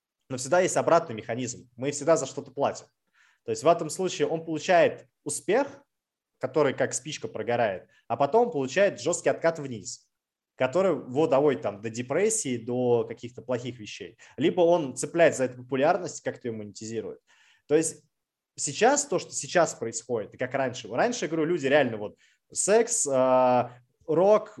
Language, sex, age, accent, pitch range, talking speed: Russian, male, 20-39, native, 120-170 Hz, 165 wpm